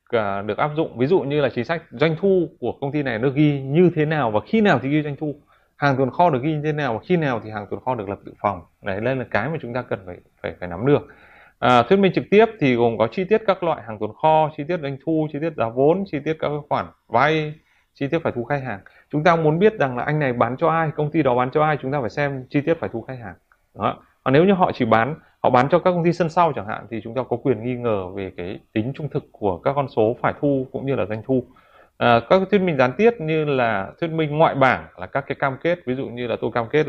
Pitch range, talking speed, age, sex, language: 115-155 Hz, 295 wpm, 20-39, male, Vietnamese